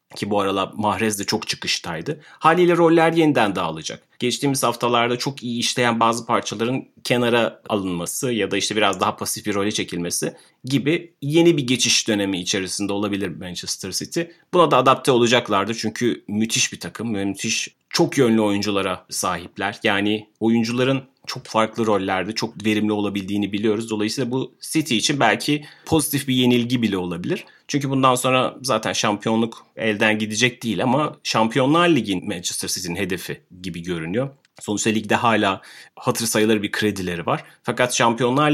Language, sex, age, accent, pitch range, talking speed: Turkish, male, 30-49, native, 105-125 Hz, 150 wpm